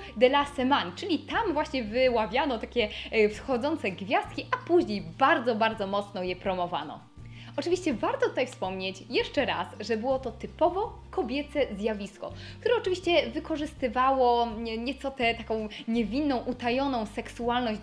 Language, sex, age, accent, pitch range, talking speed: Polish, female, 20-39, native, 225-330 Hz, 130 wpm